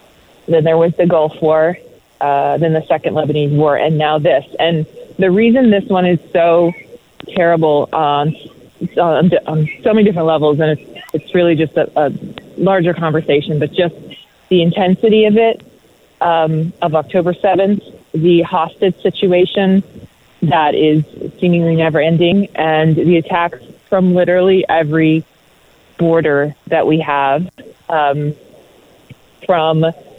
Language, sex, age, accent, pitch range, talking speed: English, female, 30-49, American, 155-180 Hz, 135 wpm